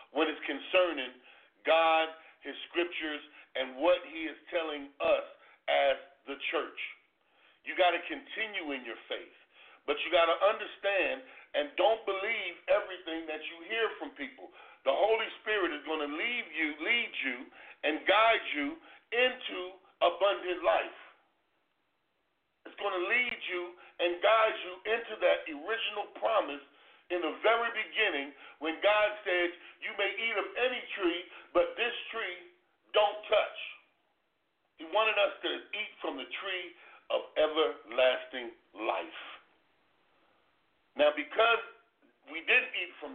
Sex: male